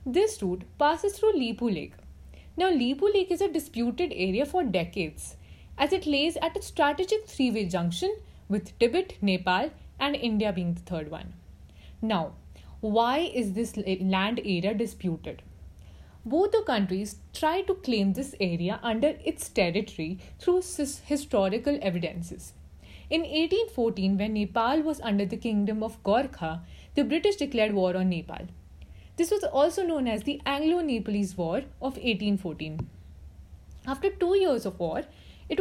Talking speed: 145 wpm